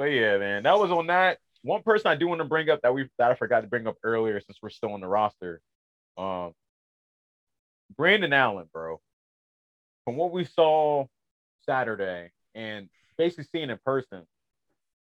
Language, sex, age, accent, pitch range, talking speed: English, male, 30-49, American, 110-165 Hz, 180 wpm